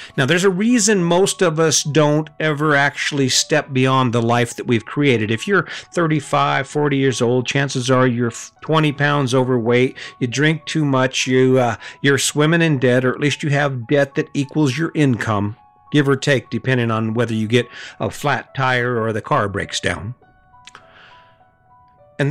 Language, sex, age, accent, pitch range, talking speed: English, male, 50-69, American, 120-145 Hz, 175 wpm